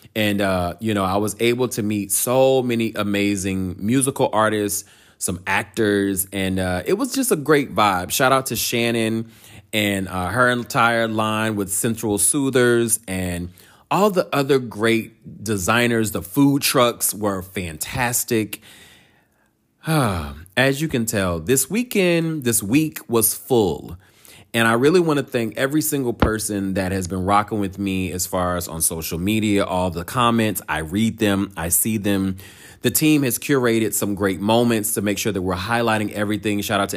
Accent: American